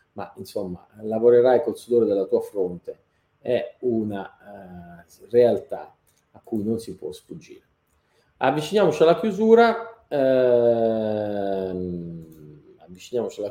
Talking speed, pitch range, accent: 105 wpm, 105-140 Hz, native